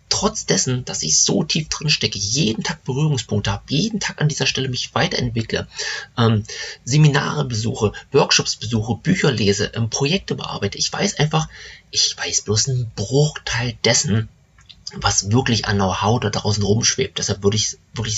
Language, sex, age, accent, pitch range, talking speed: German, male, 30-49, German, 100-130 Hz, 160 wpm